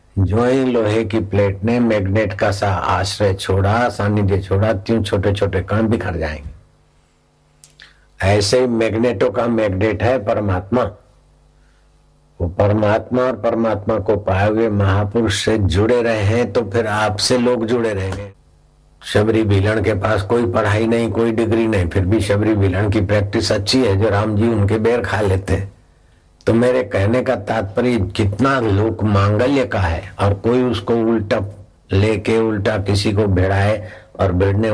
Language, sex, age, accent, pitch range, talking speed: Hindi, male, 60-79, native, 95-115 Hz, 130 wpm